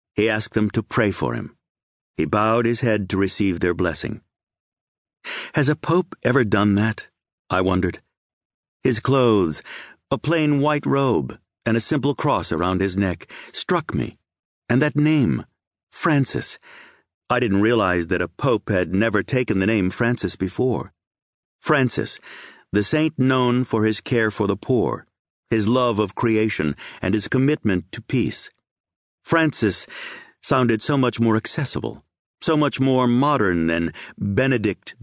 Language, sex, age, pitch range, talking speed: English, male, 50-69, 95-125 Hz, 145 wpm